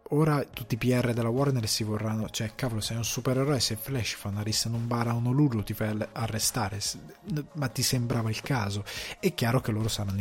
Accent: native